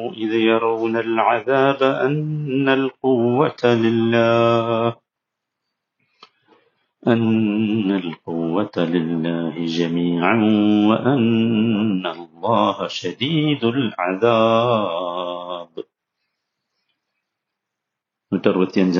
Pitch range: 90-115 Hz